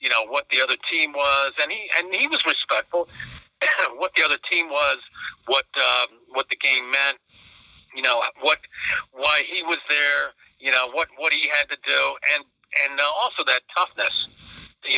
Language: English